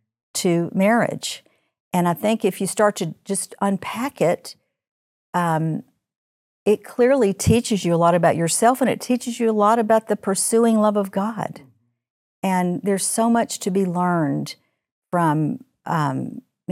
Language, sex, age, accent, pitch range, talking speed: English, female, 50-69, American, 170-200 Hz, 150 wpm